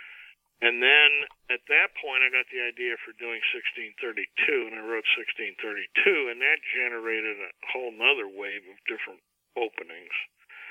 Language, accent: English, American